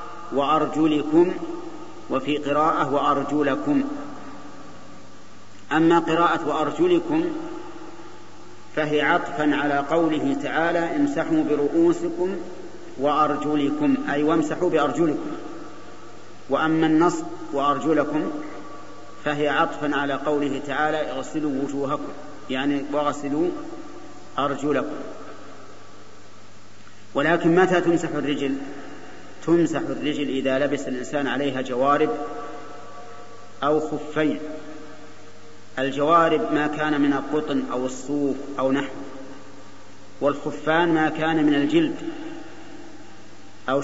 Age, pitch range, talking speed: 40-59, 140-170 Hz, 80 wpm